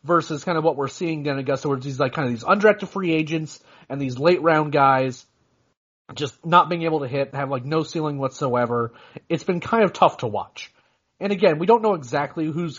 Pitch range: 135-170 Hz